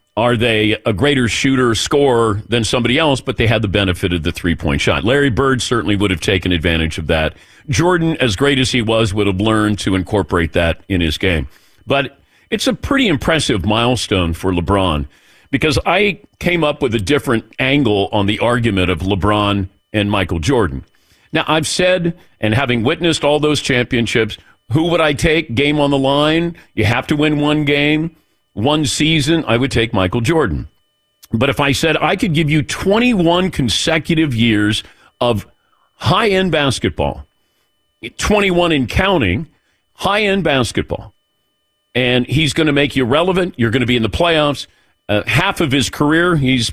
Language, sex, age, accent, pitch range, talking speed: English, male, 50-69, American, 105-150 Hz, 175 wpm